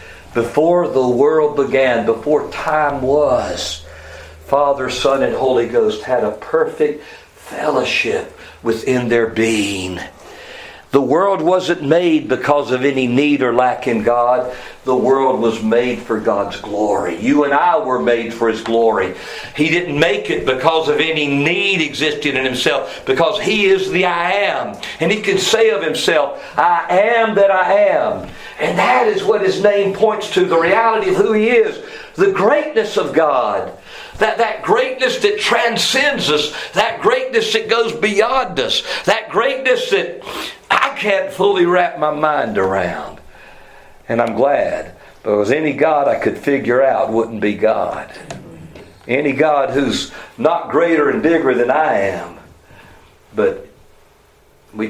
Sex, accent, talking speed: male, American, 150 wpm